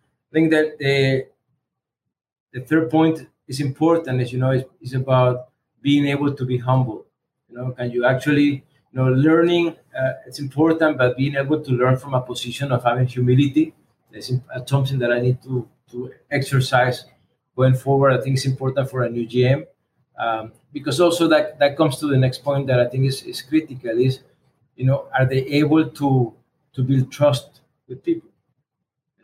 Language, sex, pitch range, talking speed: English, male, 125-145 Hz, 185 wpm